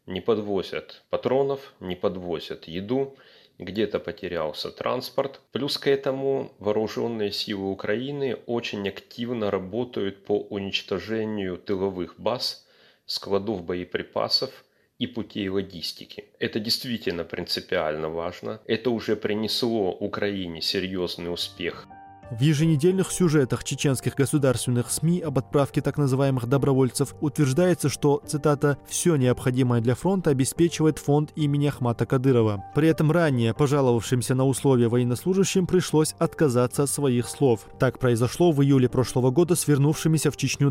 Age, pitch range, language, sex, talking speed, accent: 30-49, 115-150 Hz, Russian, male, 120 wpm, native